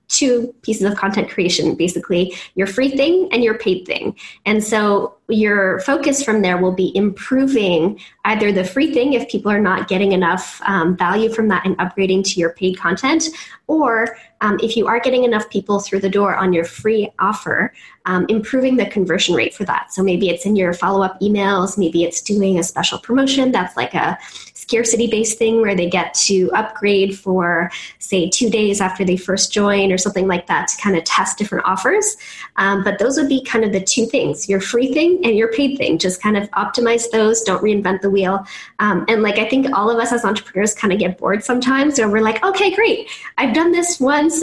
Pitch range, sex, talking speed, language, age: 190-240 Hz, female, 210 wpm, English, 10-29